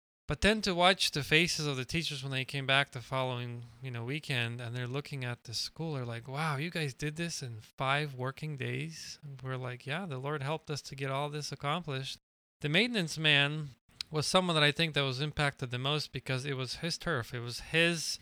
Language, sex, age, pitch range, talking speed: English, male, 20-39, 130-155 Hz, 225 wpm